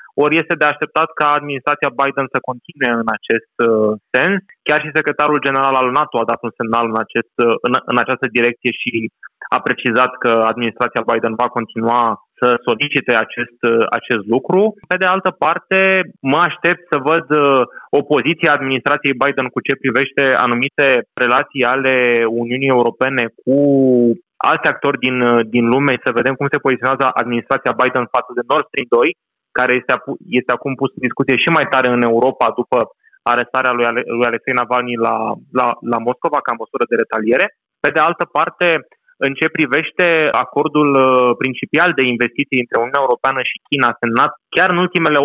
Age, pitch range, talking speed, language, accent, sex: 20-39, 120-145 Hz, 155 wpm, Romanian, native, male